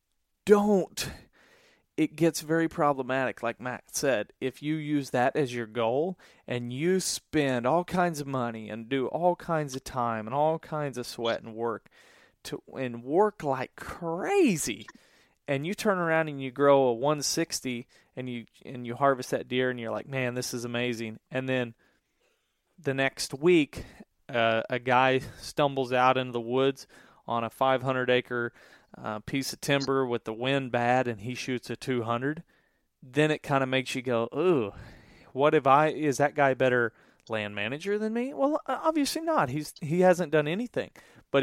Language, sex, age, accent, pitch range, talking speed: English, male, 30-49, American, 120-150 Hz, 175 wpm